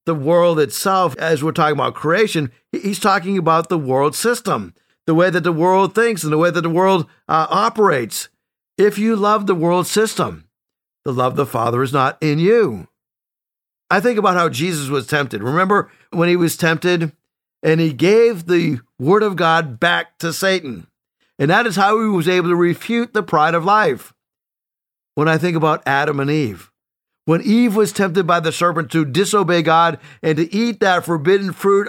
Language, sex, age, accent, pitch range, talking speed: English, male, 60-79, American, 160-205 Hz, 190 wpm